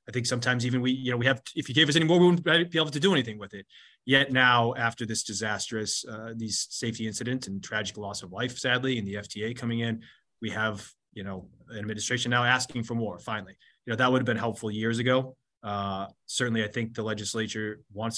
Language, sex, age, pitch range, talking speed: English, male, 20-39, 110-130 Hz, 235 wpm